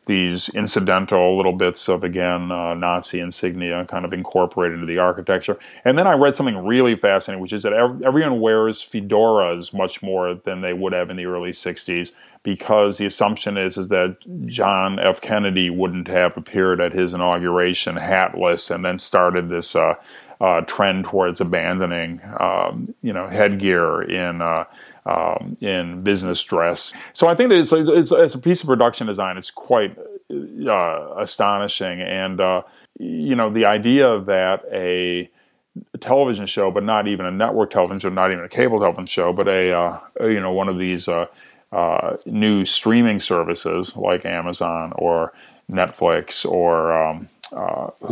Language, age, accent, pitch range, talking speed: English, 40-59, American, 90-105 Hz, 165 wpm